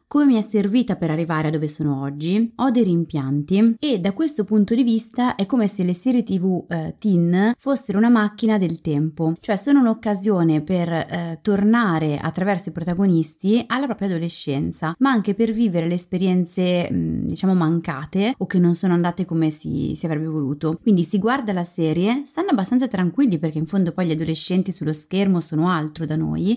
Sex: female